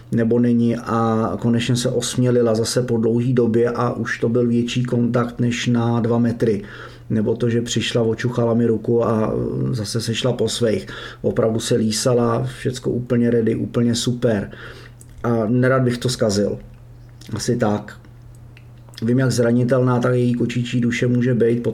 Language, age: Czech, 30-49